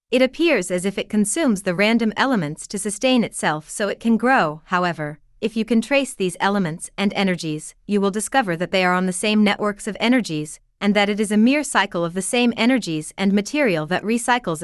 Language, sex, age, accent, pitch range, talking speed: English, female, 30-49, American, 180-235 Hz, 215 wpm